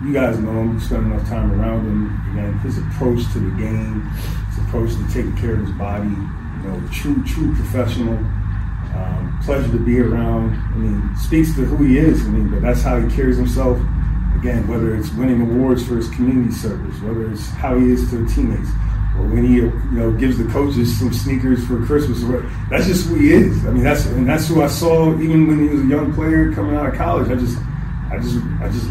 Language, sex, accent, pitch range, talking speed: English, male, American, 110-135 Hz, 220 wpm